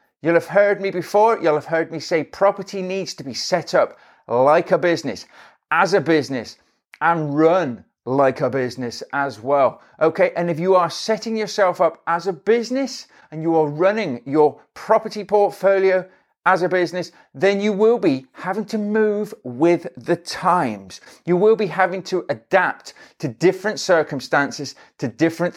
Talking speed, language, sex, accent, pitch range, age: 165 wpm, English, male, British, 150-195 Hz, 40-59